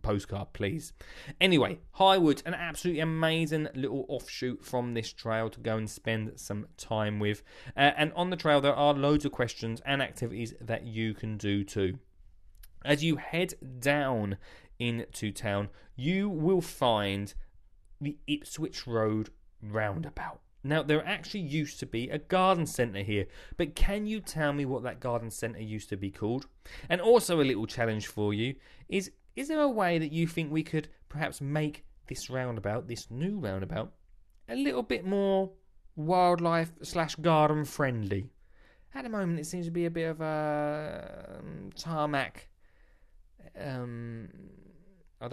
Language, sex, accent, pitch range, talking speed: English, male, British, 110-160 Hz, 150 wpm